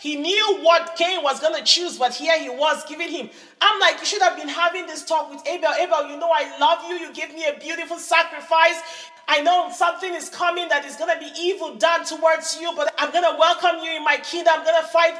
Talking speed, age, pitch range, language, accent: 255 wpm, 40-59, 305-365 Hz, English, Nigerian